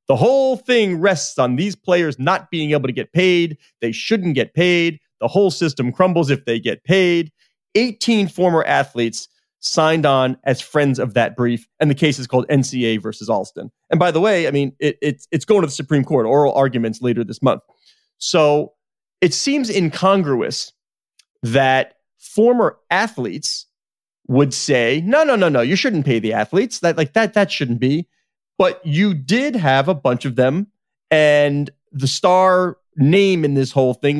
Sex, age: male, 30-49